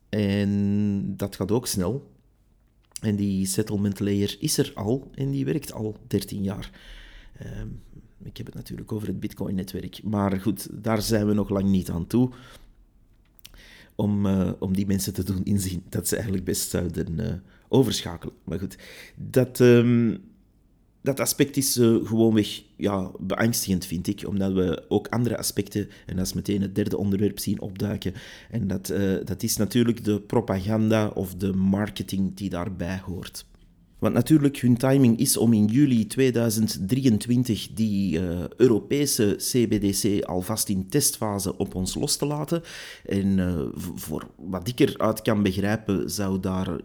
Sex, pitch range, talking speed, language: male, 95-115 Hz, 155 wpm, Dutch